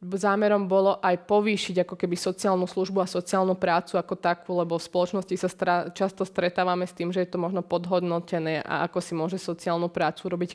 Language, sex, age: Slovak, female, 20-39